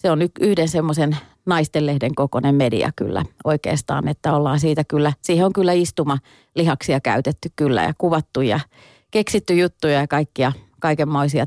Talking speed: 140 wpm